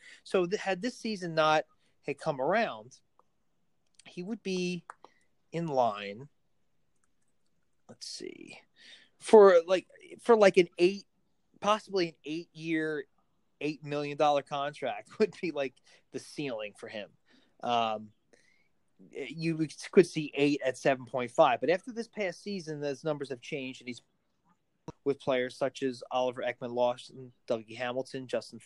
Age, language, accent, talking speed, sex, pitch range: 30-49, English, American, 130 wpm, male, 130-180 Hz